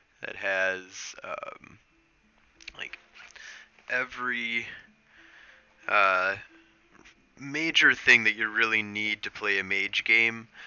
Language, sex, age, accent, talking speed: English, male, 20-39, American, 95 wpm